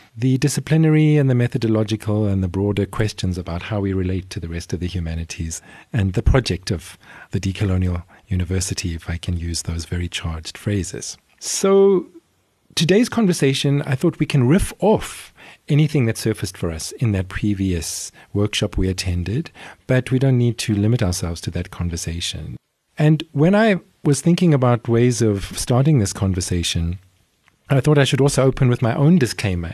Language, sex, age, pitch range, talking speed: English, male, 40-59, 95-140 Hz, 170 wpm